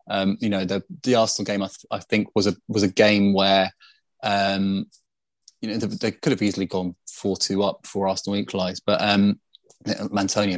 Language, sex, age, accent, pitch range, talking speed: English, male, 20-39, British, 90-100 Hz, 200 wpm